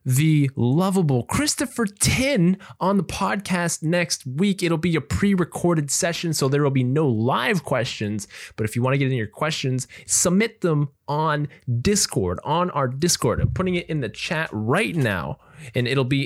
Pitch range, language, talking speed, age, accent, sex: 125-165 Hz, English, 175 wpm, 20-39, American, male